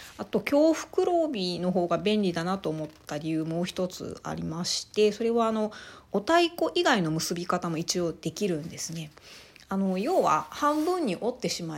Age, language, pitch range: 40-59, Japanese, 165-225 Hz